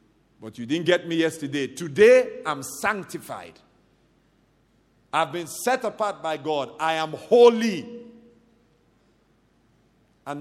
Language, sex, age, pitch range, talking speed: English, male, 50-69, 105-150 Hz, 110 wpm